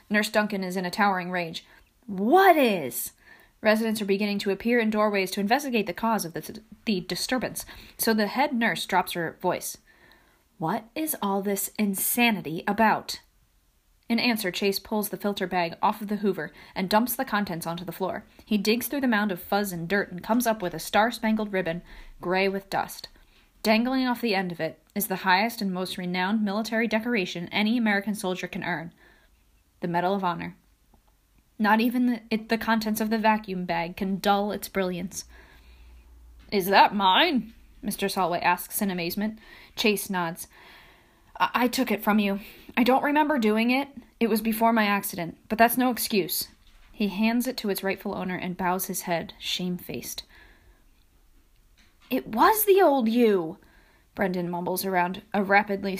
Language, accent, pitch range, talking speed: English, American, 185-225 Hz, 175 wpm